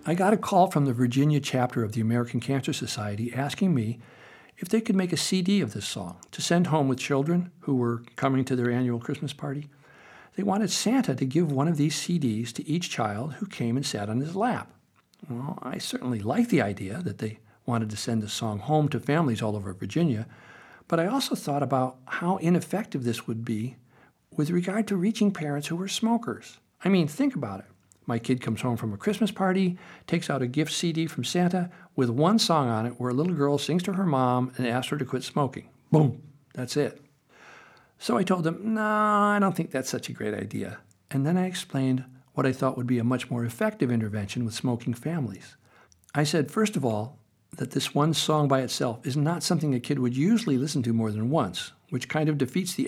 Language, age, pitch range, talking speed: English, 60-79, 120-170 Hz, 220 wpm